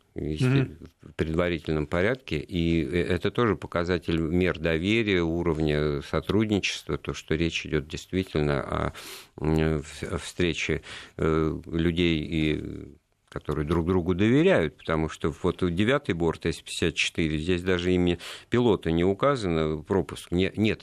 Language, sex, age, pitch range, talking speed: Russian, male, 50-69, 80-95 Hz, 110 wpm